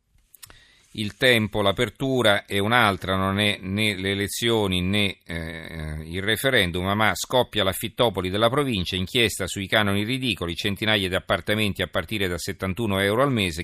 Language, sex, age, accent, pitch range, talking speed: Italian, male, 40-59, native, 95-110 Hz, 150 wpm